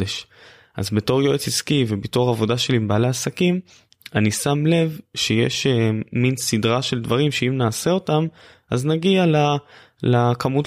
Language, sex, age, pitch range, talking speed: Hebrew, male, 20-39, 110-140 Hz, 135 wpm